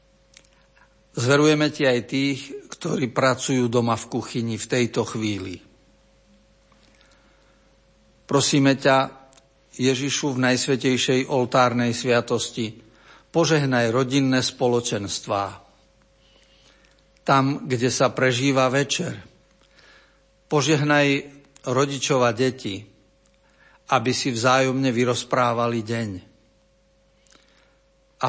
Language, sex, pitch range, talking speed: Slovak, male, 115-140 Hz, 75 wpm